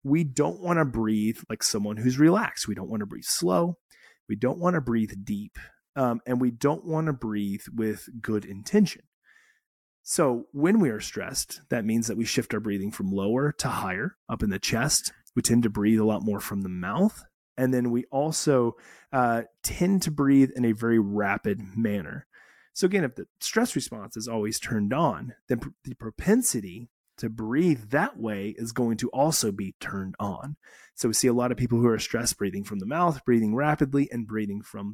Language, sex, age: English, male, 30-49